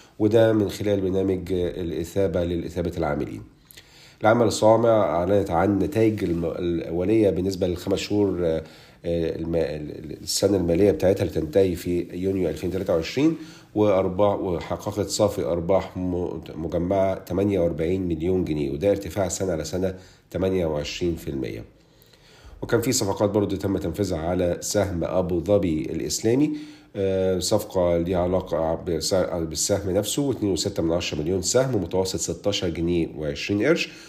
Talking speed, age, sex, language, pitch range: 115 wpm, 50-69, male, Arabic, 85-100 Hz